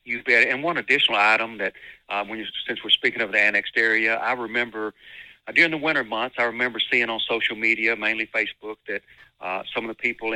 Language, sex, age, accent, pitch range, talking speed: English, male, 50-69, American, 105-115 Hz, 220 wpm